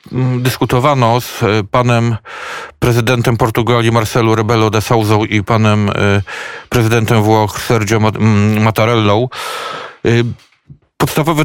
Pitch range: 110-120 Hz